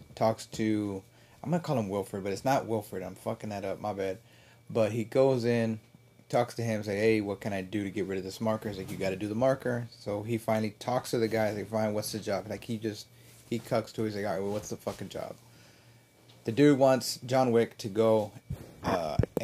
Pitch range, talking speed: 105-120 Hz, 240 wpm